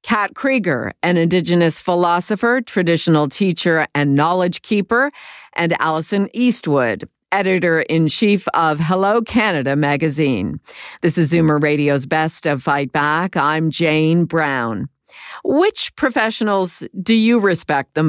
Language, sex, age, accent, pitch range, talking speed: English, female, 50-69, American, 160-215 Hz, 115 wpm